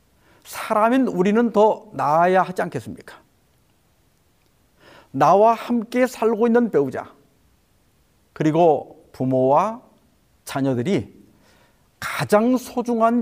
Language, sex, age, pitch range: Korean, male, 50-69, 155-215 Hz